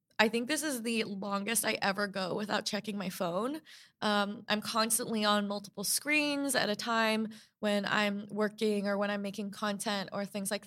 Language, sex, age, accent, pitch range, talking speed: English, female, 20-39, American, 205-230 Hz, 185 wpm